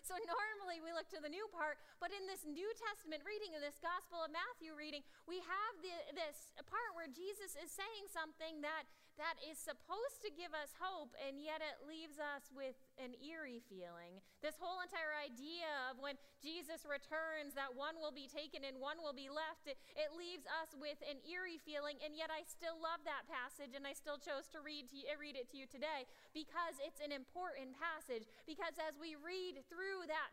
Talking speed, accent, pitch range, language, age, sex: 200 wpm, American, 280-335 Hz, English, 20-39, female